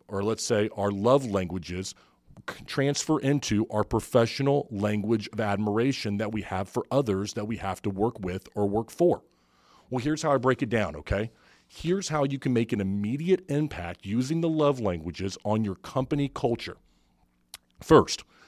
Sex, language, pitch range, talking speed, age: male, English, 100-130 Hz, 170 wpm, 40-59